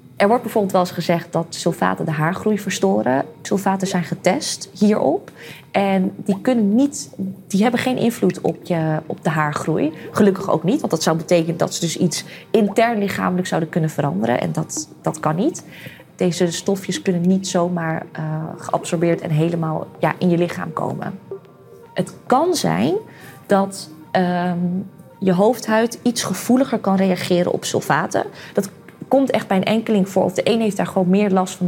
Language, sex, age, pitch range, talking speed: Dutch, female, 20-39, 175-210 Hz, 175 wpm